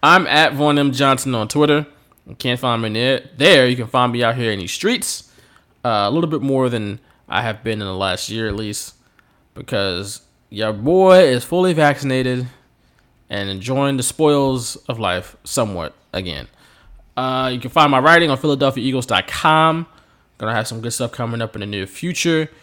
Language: English